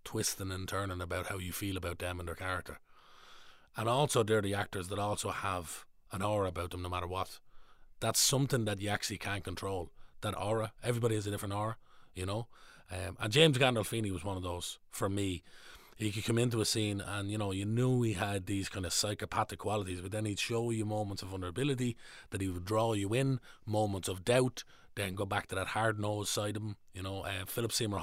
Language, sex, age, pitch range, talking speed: English, male, 30-49, 95-110 Hz, 220 wpm